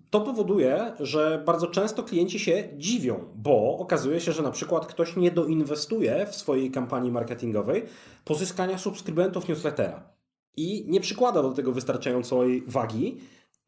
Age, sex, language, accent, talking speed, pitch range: 30-49, male, Polish, native, 135 wpm, 130-175 Hz